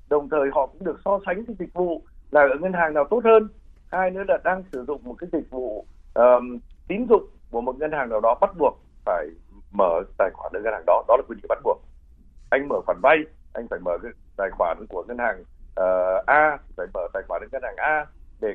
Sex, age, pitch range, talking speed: male, 60-79, 125-185 Hz, 245 wpm